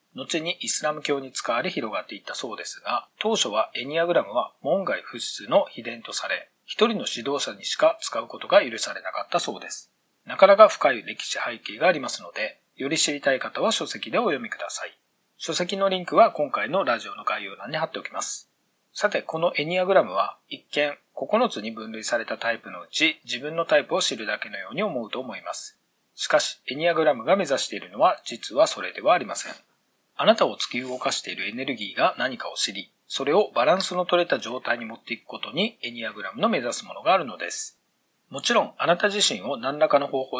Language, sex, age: Japanese, male, 40-59